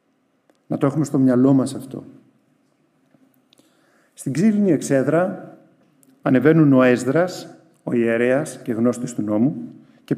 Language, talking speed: Greek, 120 wpm